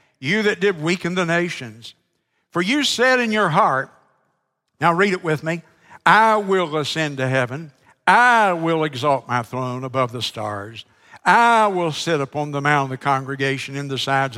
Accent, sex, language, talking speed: American, male, English, 175 wpm